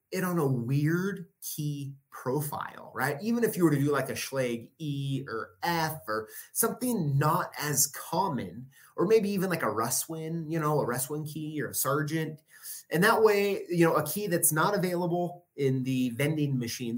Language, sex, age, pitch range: English, male, 30-49, 135-185 Hz